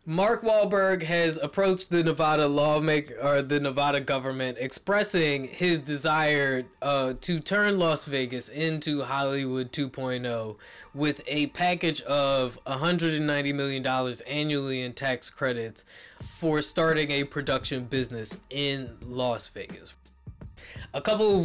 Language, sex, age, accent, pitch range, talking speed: English, male, 20-39, American, 130-165 Hz, 125 wpm